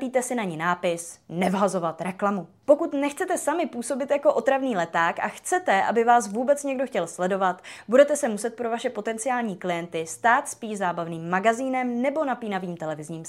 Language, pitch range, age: Czech, 190-265 Hz, 20-39